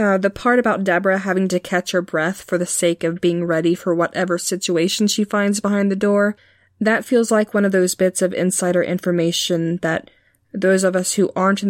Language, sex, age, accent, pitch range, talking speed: English, female, 20-39, American, 170-200 Hz, 210 wpm